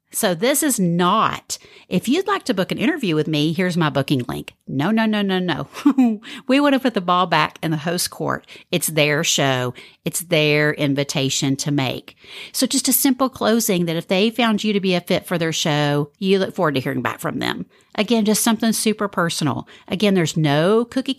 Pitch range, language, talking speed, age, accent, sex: 155-220 Hz, English, 210 wpm, 50-69, American, female